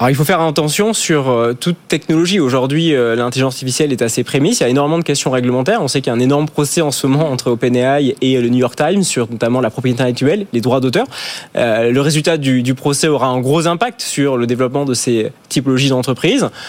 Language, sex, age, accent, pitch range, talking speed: French, male, 20-39, French, 130-160 Hz, 225 wpm